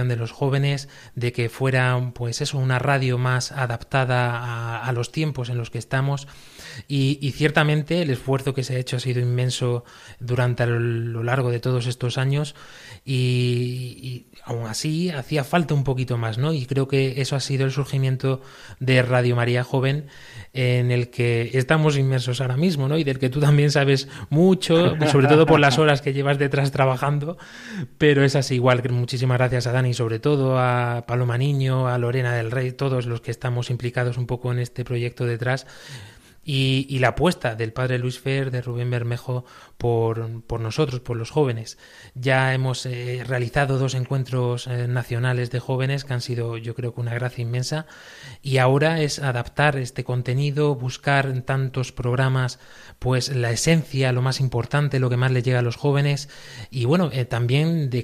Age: 20-39